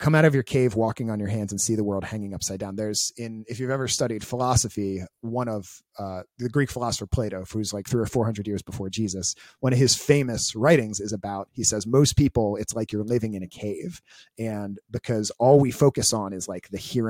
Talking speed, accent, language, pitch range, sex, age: 230 wpm, American, English, 100-130 Hz, male, 30-49